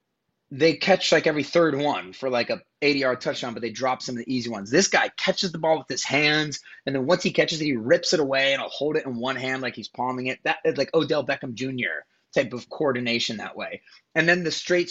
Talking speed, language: 260 wpm, English